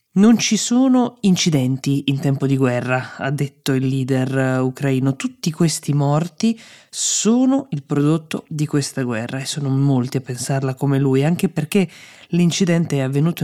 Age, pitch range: 20-39, 135-165 Hz